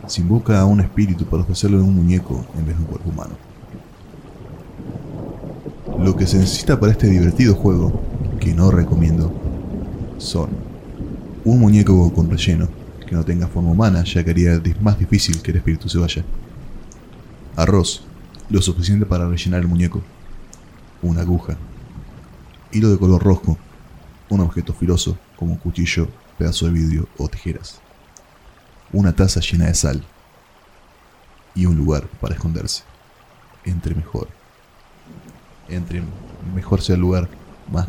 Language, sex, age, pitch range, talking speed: Spanish, male, 20-39, 85-100 Hz, 140 wpm